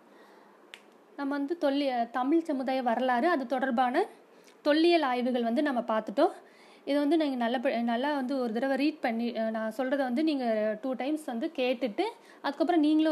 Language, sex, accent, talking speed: Tamil, female, native, 155 wpm